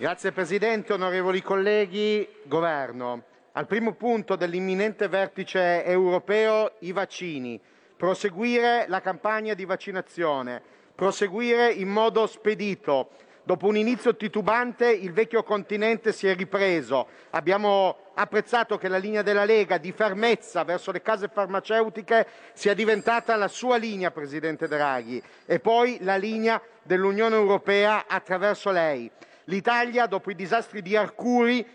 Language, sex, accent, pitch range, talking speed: Italian, male, native, 190-230 Hz, 125 wpm